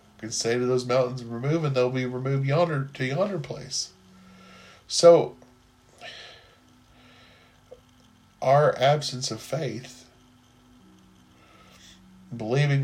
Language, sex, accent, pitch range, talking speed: English, male, American, 115-135 Hz, 95 wpm